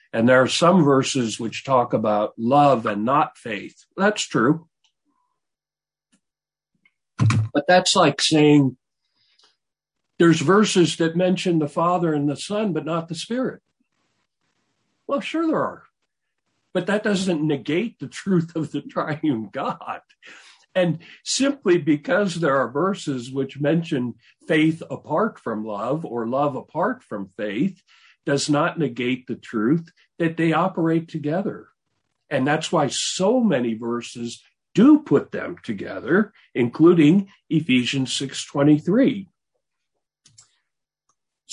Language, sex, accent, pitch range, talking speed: English, male, American, 135-185 Hz, 120 wpm